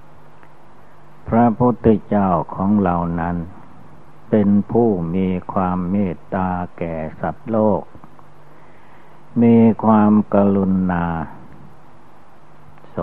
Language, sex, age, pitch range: Thai, male, 60-79, 85-105 Hz